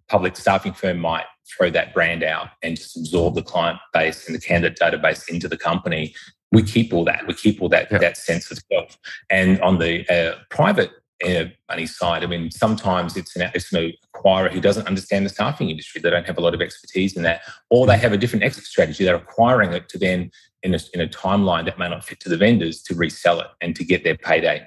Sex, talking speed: male, 235 wpm